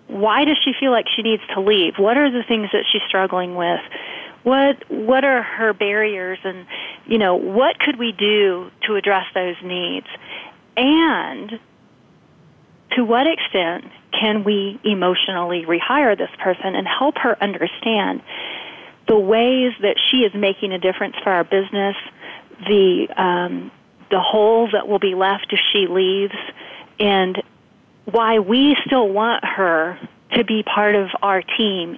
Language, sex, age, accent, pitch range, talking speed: English, female, 40-59, American, 195-250 Hz, 150 wpm